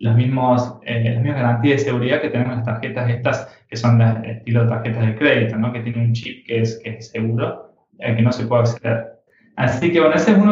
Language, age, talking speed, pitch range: Spanish, 20-39, 235 wpm, 120-145 Hz